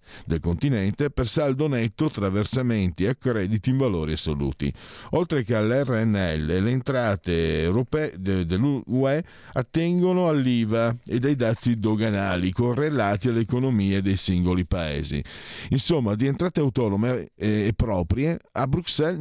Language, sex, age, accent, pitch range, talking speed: Italian, male, 50-69, native, 85-120 Hz, 125 wpm